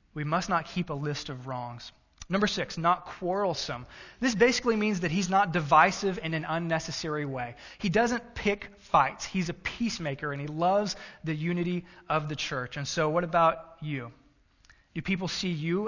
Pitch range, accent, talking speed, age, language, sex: 145-185 Hz, American, 180 wpm, 20-39, English, male